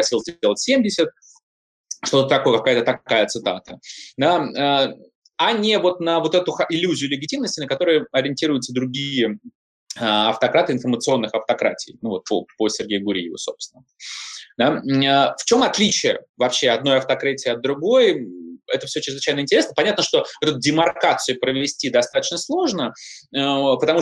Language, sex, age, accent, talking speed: Russian, male, 20-39, native, 120 wpm